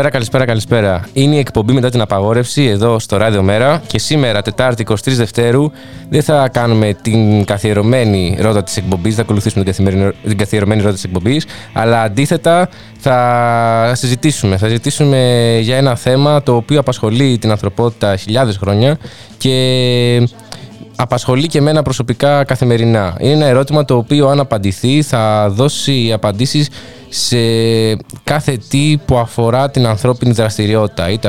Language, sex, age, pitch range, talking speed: Greek, male, 20-39, 105-135 Hz, 145 wpm